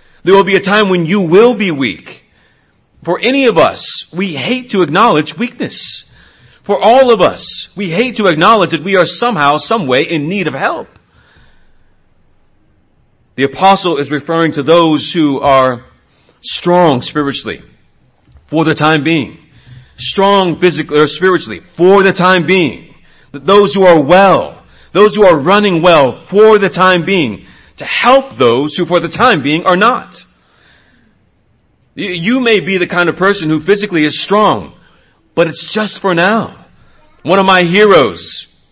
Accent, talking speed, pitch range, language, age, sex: American, 160 wpm, 155-200 Hz, English, 40-59, male